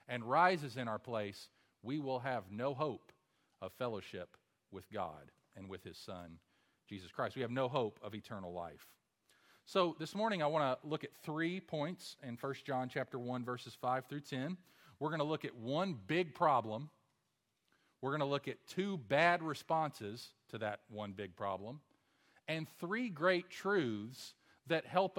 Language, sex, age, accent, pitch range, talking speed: English, male, 40-59, American, 115-165 Hz, 175 wpm